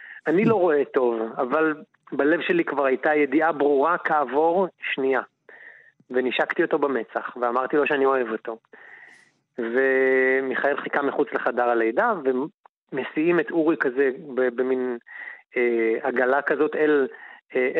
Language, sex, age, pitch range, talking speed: Hebrew, male, 30-49, 125-160 Hz, 120 wpm